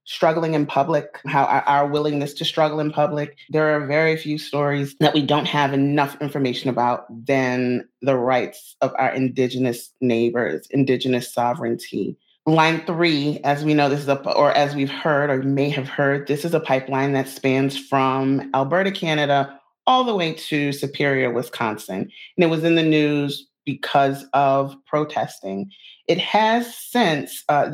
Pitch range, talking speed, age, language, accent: 135-155 Hz, 160 wpm, 30-49, English, American